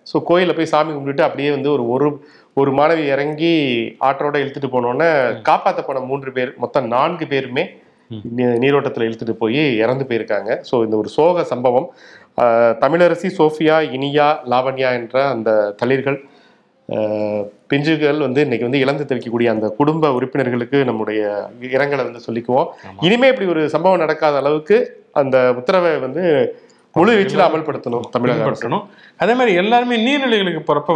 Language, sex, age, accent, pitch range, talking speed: English, male, 30-49, Indian, 125-165 Hz, 135 wpm